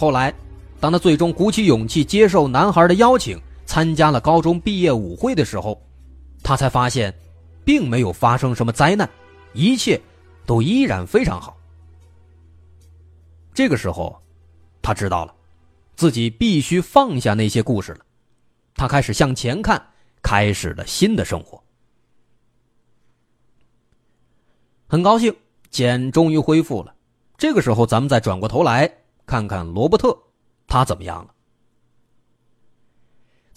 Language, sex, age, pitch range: Chinese, male, 30-49, 105-165 Hz